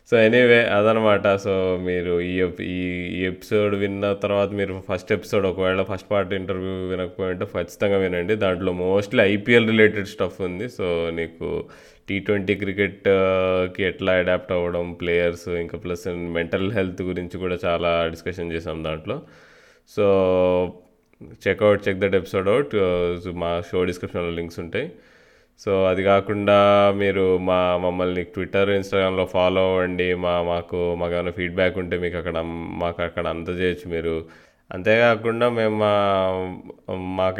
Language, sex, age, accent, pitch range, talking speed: Telugu, male, 20-39, native, 85-100 Hz, 135 wpm